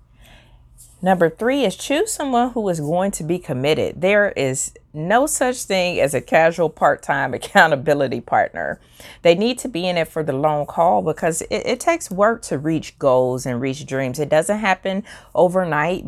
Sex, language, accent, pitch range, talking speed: female, English, American, 130-170 Hz, 175 wpm